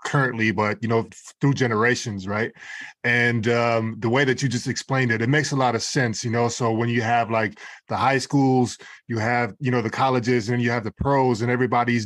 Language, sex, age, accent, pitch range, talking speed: English, male, 20-39, American, 115-130 Hz, 225 wpm